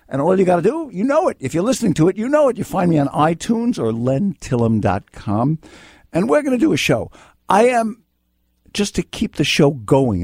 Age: 60-79